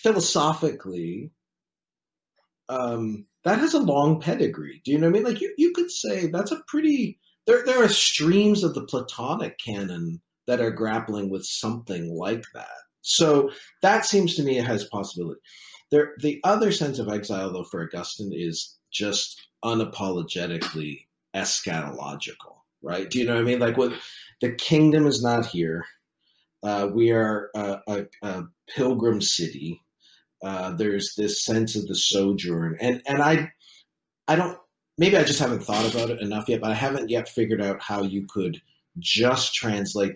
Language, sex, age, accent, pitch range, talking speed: English, male, 40-59, American, 95-150 Hz, 170 wpm